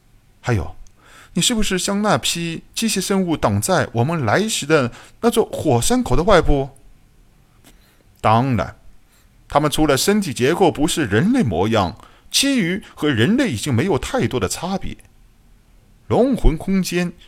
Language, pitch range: Chinese, 105-175 Hz